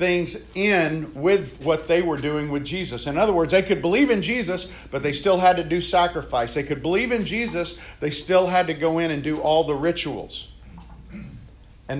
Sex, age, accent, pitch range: male, 50-69, American, 145-190 Hz